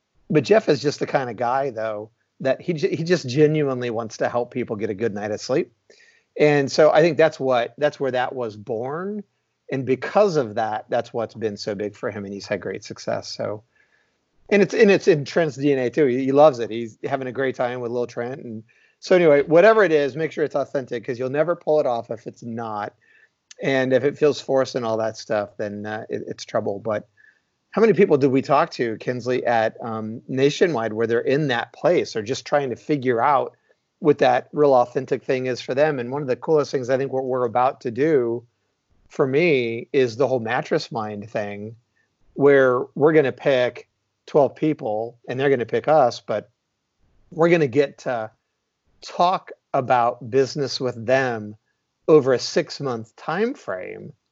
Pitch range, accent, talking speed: 115-150 Hz, American, 205 wpm